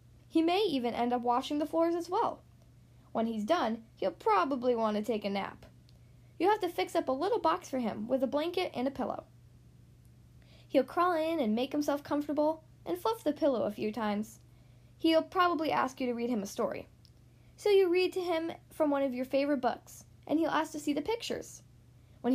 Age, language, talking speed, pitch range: 10-29, English, 210 wpm, 240-335 Hz